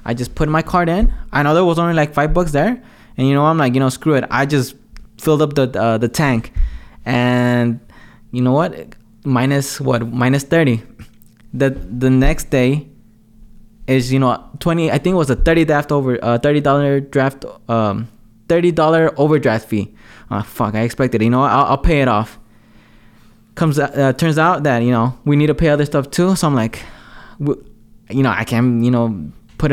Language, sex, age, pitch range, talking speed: English, male, 20-39, 115-160 Hz, 200 wpm